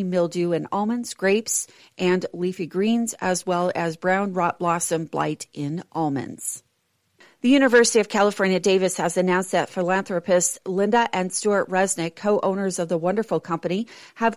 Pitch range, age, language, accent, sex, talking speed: 170-200 Hz, 40-59, English, American, female, 145 wpm